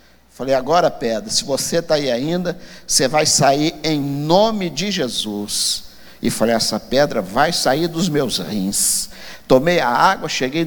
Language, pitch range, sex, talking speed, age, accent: Portuguese, 160-245 Hz, male, 155 wpm, 50-69, Brazilian